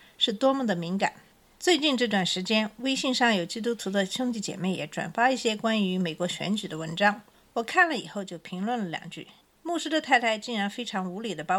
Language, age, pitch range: Chinese, 50-69, 190-255 Hz